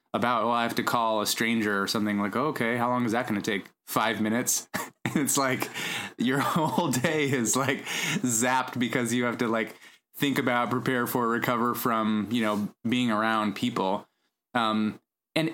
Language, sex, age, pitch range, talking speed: English, male, 20-39, 105-125 Hz, 180 wpm